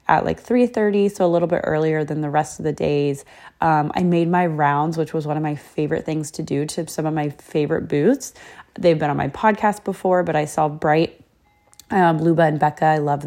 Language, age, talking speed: English, 20-39, 230 wpm